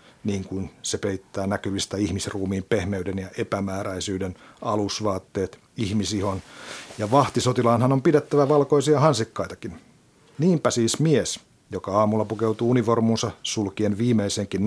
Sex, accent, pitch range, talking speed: male, native, 100-120 Hz, 105 wpm